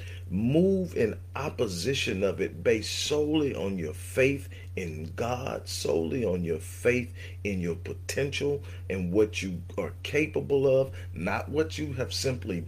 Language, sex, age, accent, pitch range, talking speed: English, male, 40-59, American, 90-105 Hz, 140 wpm